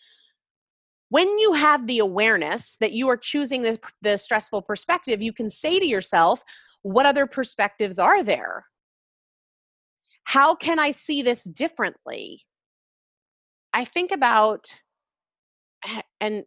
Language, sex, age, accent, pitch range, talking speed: English, female, 30-49, American, 175-245 Hz, 120 wpm